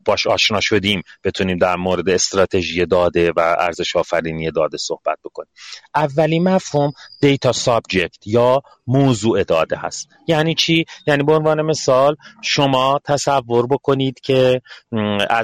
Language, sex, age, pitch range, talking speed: Persian, male, 40-59, 100-135 Hz, 125 wpm